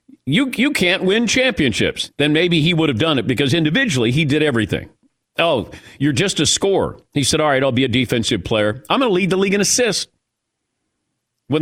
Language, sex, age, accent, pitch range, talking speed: English, male, 50-69, American, 125-185 Hz, 205 wpm